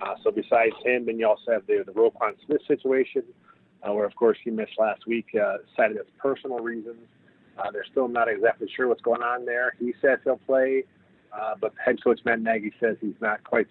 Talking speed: 220 wpm